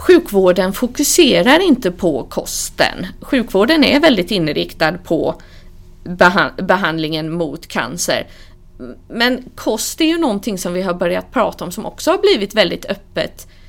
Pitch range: 185-280 Hz